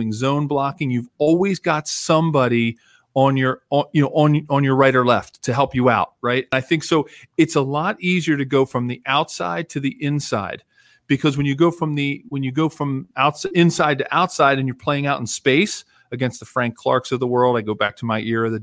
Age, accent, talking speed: 40-59, American, 225 wpm